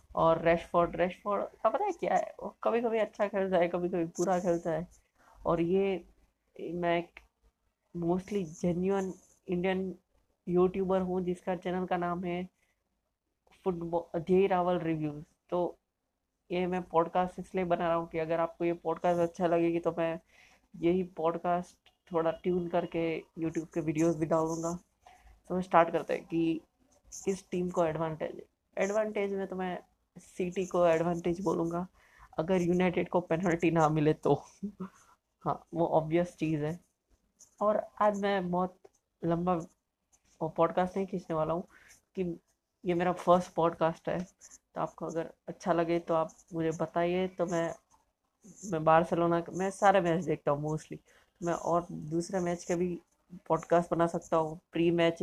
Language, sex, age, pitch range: Hindi, female, 20-39, 165-180 Hz